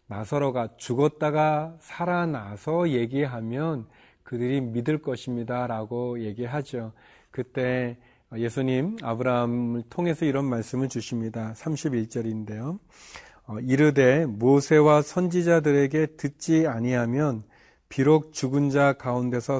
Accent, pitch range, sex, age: native, 120-150 Hz, male, 40-59